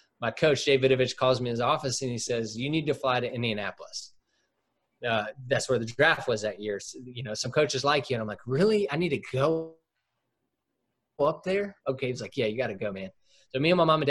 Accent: American